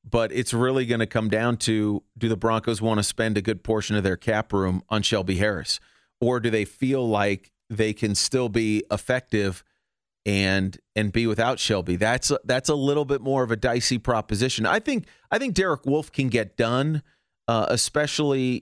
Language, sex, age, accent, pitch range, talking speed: English, male, 40-59, American, 105-130 Hz, 195 wpm